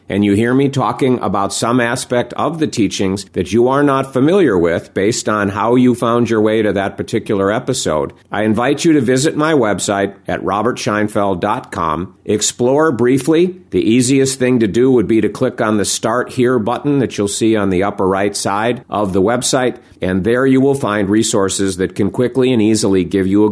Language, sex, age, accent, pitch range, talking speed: English, male, 50-69, American, 105-130 Hz, 200 wpm